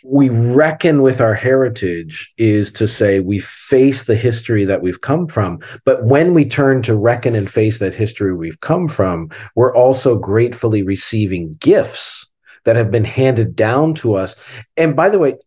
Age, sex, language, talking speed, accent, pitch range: 40-59, male, English, 175 wpm, American, 105-135 Hz